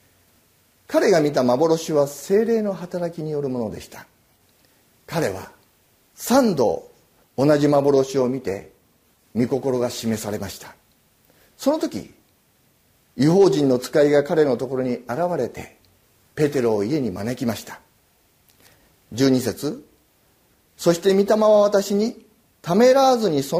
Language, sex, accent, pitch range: Japanese, male, native, 125-195 Hz